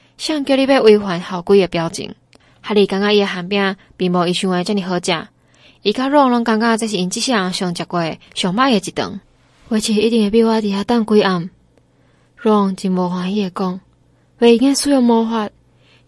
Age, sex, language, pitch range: 20-39, female, Chinese, 180-225 Hz